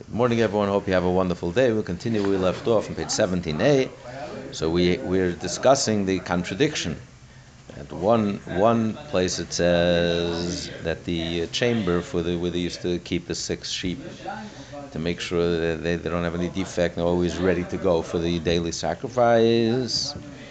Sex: male